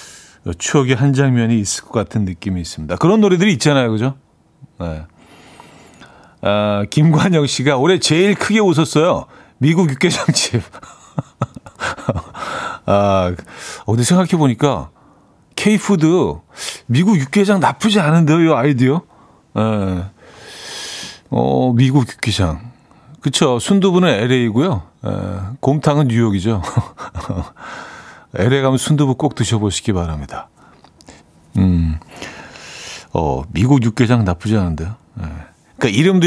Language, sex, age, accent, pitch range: Korean, male, 40-59, native, 100-155 Hz